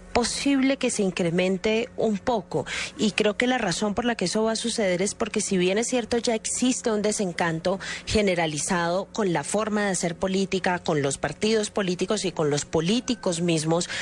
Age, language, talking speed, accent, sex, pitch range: 30-49, Spanish, 190 wpm, Colombian, female, 180-225 Hz